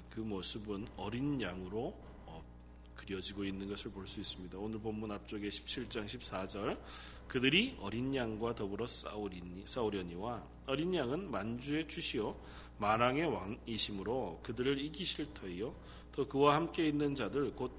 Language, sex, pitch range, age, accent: Korean, male, 90-155 Hz, 40-59, native